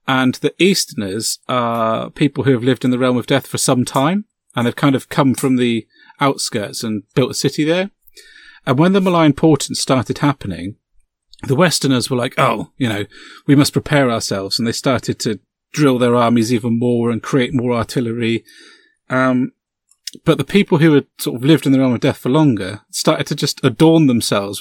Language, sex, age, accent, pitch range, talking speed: English, male, 30-49, British, 125-160 Hz, 200 wpm